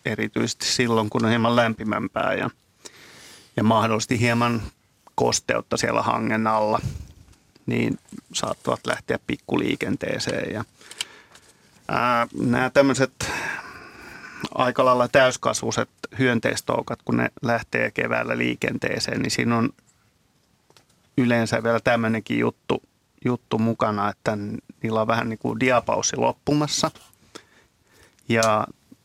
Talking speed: 100 wpm